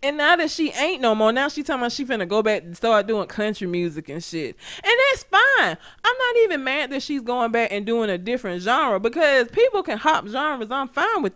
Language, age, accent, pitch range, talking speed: English, 20-39, American, 205-300 Hz, 250 wpm